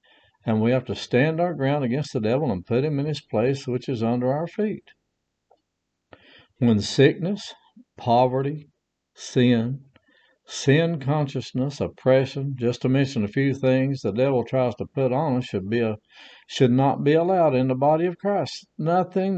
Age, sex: 60-79, male